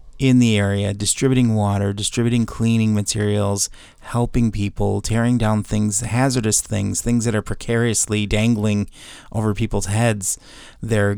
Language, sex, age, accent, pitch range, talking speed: English, male, 30-49, American, 100-115 Hz, 130 wpm